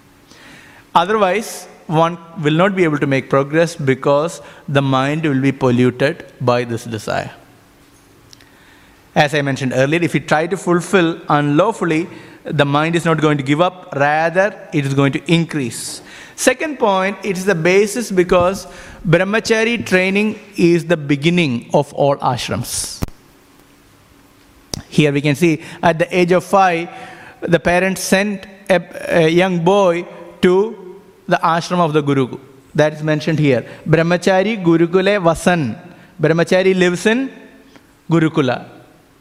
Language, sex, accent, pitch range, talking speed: English, male, Indian, 155-195 Hz, 140 wpm